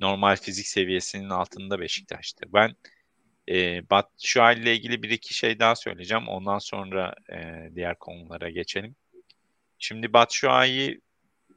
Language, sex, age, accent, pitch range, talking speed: English, male, 40-59, Turkish, 95-115 Hz, 110 wpm